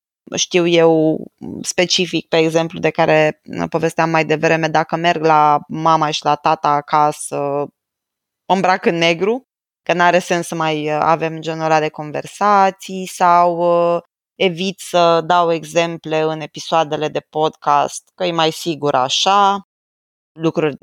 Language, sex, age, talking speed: Romanian, female, 20-39, 135 wpm